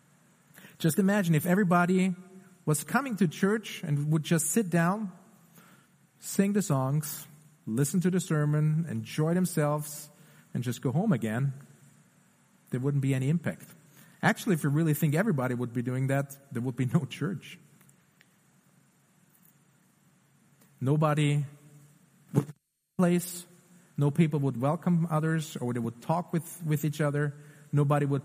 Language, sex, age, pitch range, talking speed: English, male, 40-59, 145-175 Hz, 140 wpm